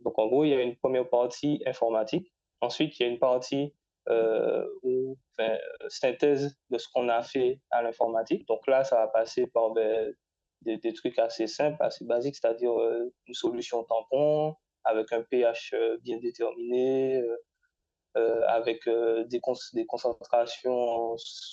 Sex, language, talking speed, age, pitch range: male, French, 165 wpm, 20-39, 115-195 Hz